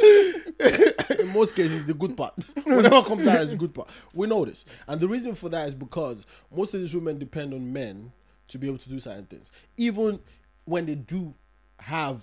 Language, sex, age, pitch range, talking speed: English, male, 20-39, 130-220 Hz, 210 wpm